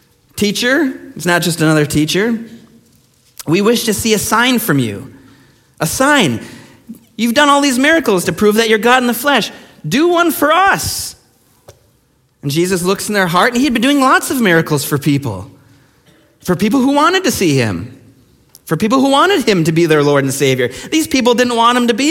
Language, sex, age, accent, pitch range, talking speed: English, male, 30-49, American, 155-230 Hz, 200 wpm